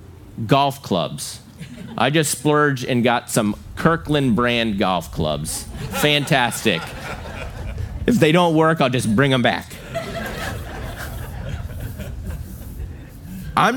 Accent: American